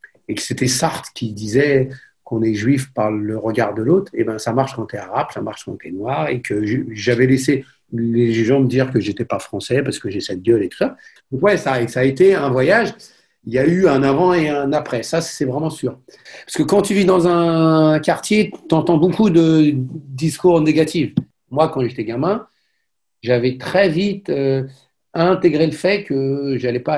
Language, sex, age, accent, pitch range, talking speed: French, male, 50-69, French, 125-170 Hz, 210 wpm